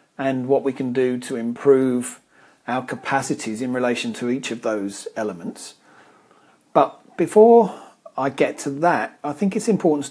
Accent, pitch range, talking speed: British, 130-160 Hz, 155 wpm